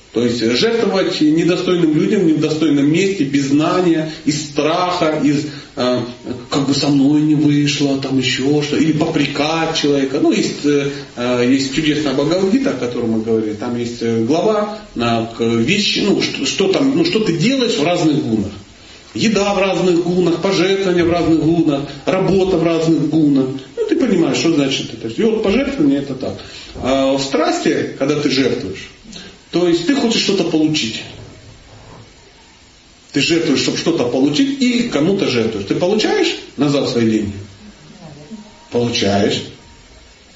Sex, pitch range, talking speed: male, 120-185 Hz, 155 wpm